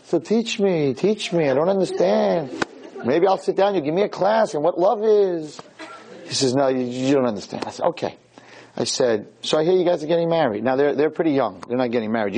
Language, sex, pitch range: English, male, 135-195 Hz